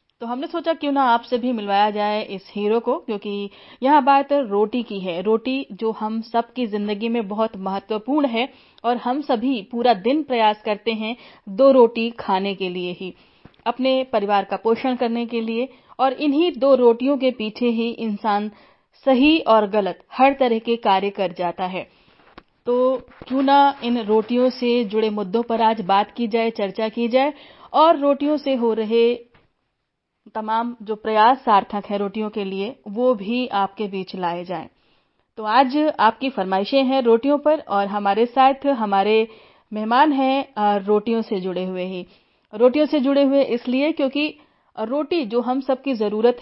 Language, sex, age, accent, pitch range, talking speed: Hindi, female, 30-49, native, 210-265 Hz, 170 wpm